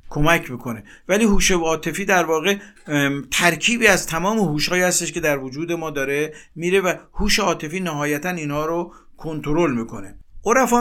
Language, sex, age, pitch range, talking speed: Persian, male, 50-69, 140-185 Hz, 160 wpm